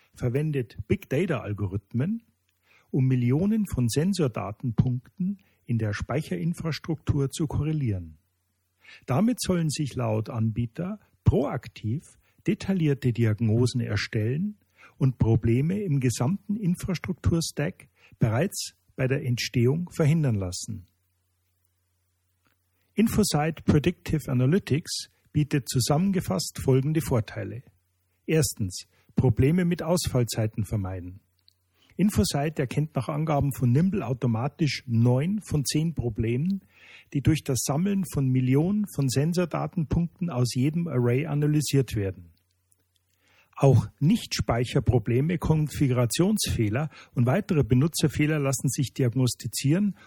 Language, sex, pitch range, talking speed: German, male, 110-155 Hz, 90 wpm